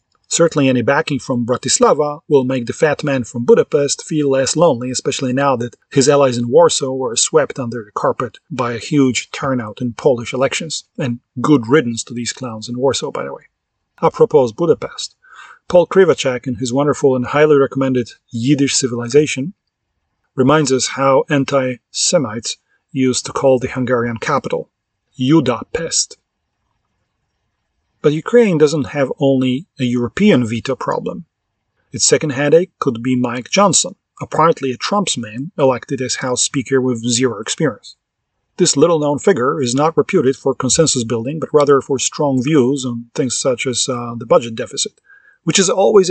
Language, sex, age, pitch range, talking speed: English, male, 40-59, 125-150 Hz, 155 wpm